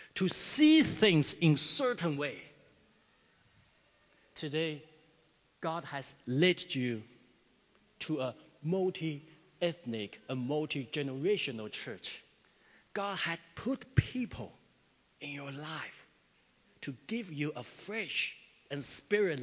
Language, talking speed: English, 105 wpm